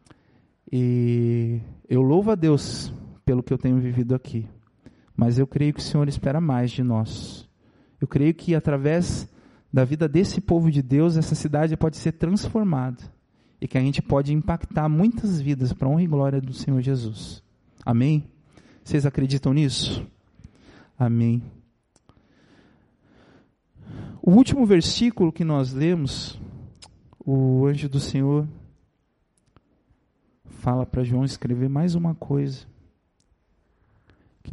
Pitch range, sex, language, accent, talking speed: 125-165 Hz, male, Portuguese, Brazilian, 130 wpm